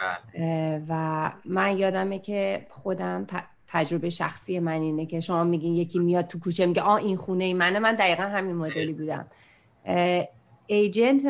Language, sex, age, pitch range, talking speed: Persian, female, 30-49, 170-210 Hz, 150 wpm